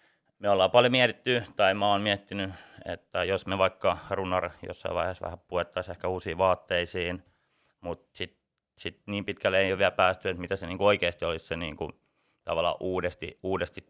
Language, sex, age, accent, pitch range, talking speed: Finnish, male, 30-49, native, 90-110 Hz, 175 wpm